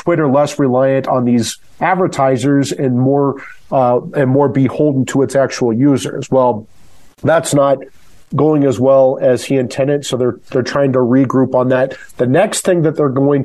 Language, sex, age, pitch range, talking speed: English, male, 40-59, 130-155 Hz, 175 wpm